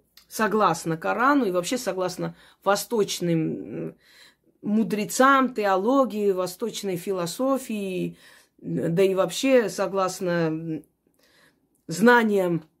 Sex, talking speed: female, 70 wpm